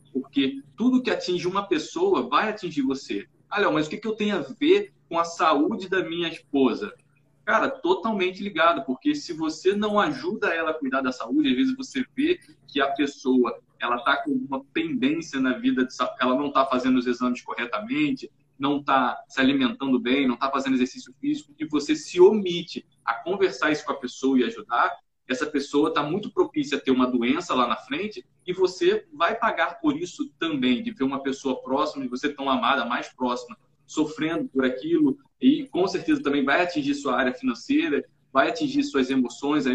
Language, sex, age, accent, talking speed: Portuguese, male, 20-39, Brazilian, 190 wpm